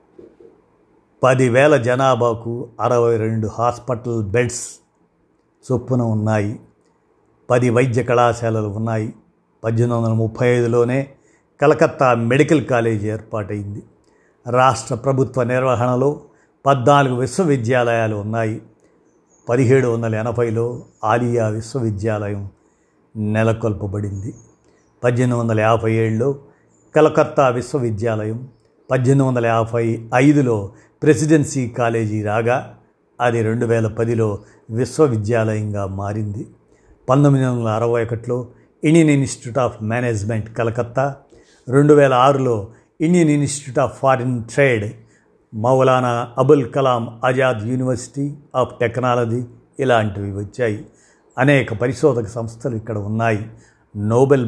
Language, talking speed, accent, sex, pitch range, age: Telugu, 90 wpm, native, male, 110-130 Hz, 50-69